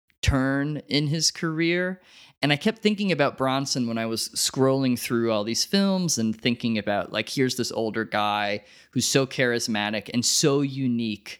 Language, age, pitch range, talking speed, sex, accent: English, 20-39, 105-135 Hz, 170 wpm, male, American